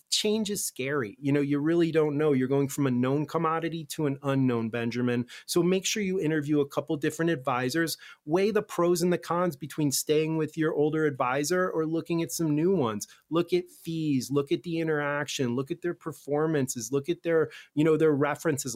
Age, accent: 30-49, American